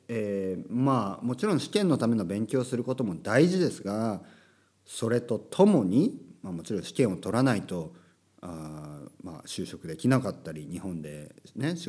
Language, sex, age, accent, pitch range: Japanese, male, 50-69, native, 95-135 Hz